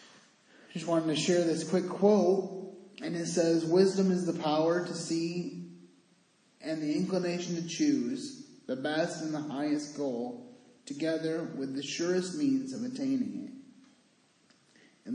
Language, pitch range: English, 145-195 Hz